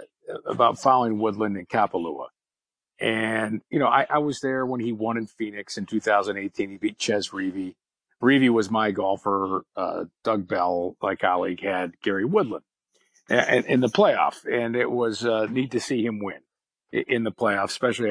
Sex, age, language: male, 50-69, English